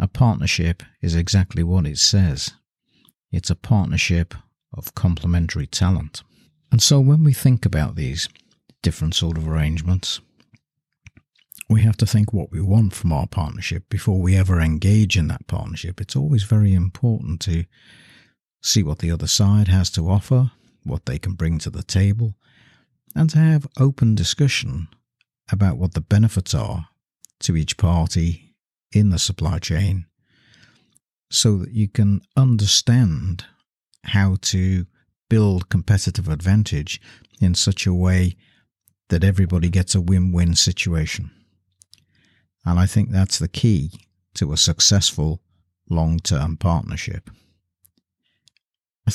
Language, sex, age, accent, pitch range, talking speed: English, male, 60-79, British, 85-110 Hz, 135 wpm